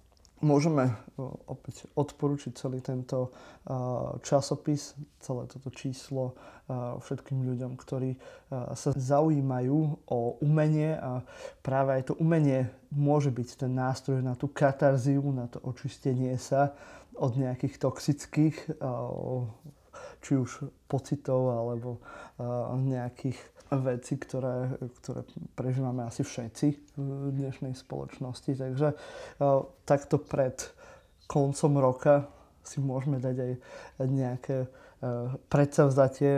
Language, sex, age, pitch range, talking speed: Slovak, male, 20-39, 125-140 Hz, 100 wpm